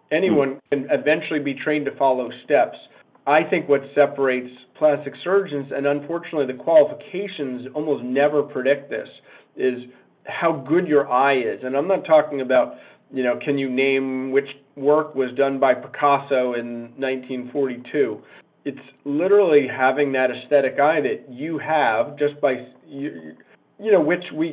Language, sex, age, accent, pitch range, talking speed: English, male, 40-59, American, 130-155 Hz, 150 wpm